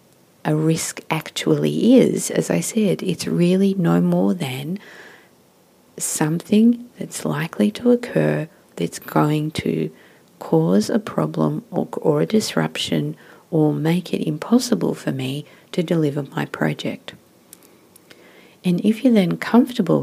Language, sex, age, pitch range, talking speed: English, female, 50-69, 130-210 Hz, 125 wpm